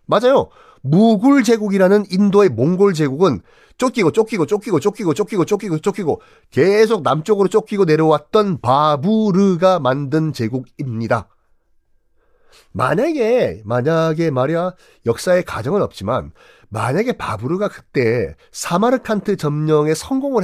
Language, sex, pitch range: Korean, male, 140-205 Hz